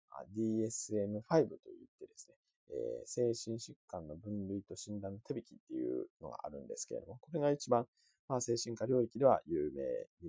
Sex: male